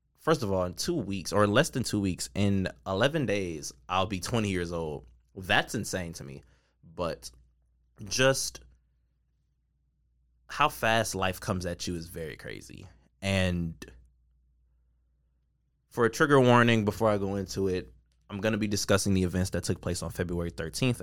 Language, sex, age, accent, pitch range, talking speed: English, male, 20-39, American, 65-100 Hz, 165 wpm